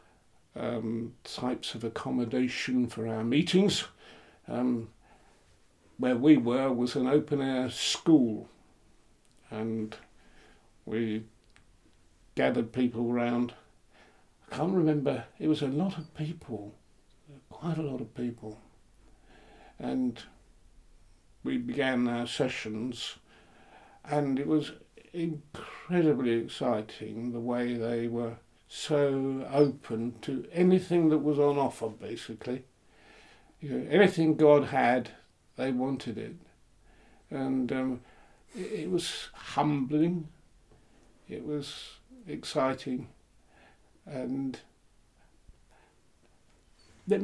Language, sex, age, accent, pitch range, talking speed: English, male, 60-79, British, 115-150 Hz, 100 wpm